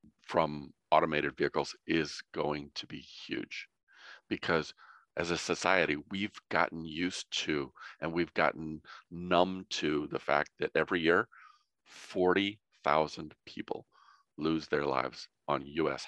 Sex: male